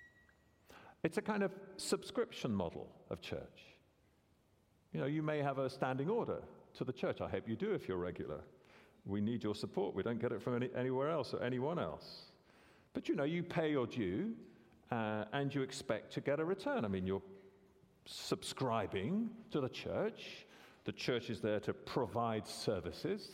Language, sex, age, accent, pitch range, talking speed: English, male, 50-69, British, 120-190 Hz, 175 wpm